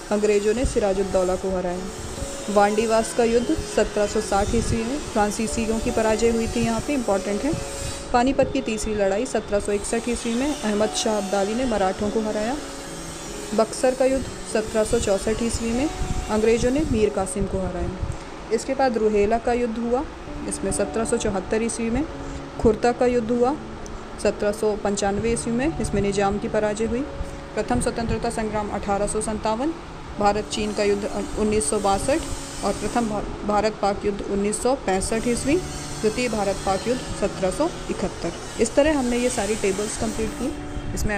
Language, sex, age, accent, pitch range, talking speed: Hindi, female, 20-39, native, 205-235 Hz, 145 wpm